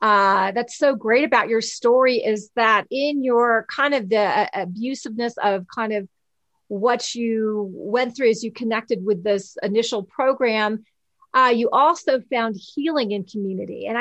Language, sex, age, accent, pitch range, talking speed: English, female, 40-59, American, 215-255 Hz, 165 wpm